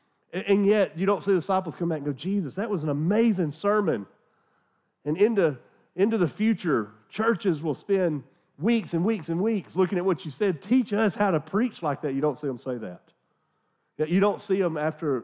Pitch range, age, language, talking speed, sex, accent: 135-190 Hz, 40-59, English, 210 wpm, male, American